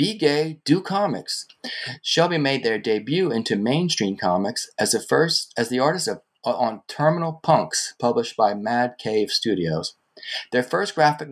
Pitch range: 110-145 Hz